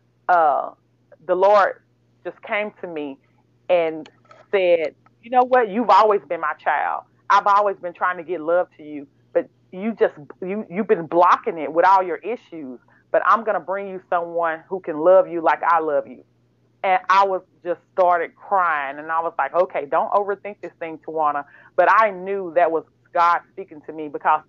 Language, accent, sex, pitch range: English, American, female, 165-200 Hz